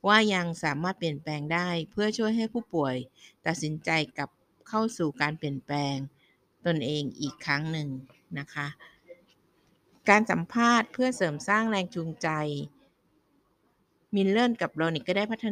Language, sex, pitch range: Thai, female, 155-190 Hz